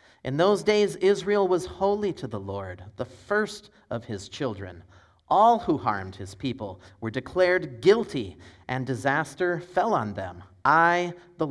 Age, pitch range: 30-49, 105-150 Hz